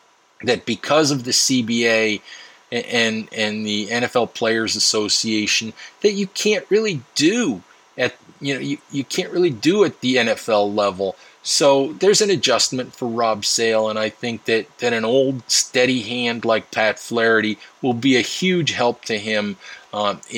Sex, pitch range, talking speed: male, 110-145 Hz, 165 wpm